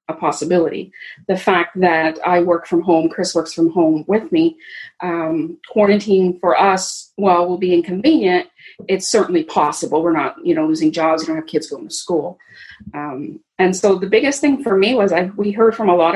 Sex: female